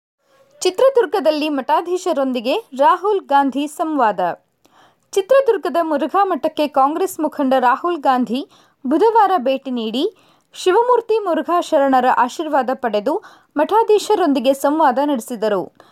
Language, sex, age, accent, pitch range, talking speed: Kannada, female, 20-39, native, 260-360 Hz, 85 wpm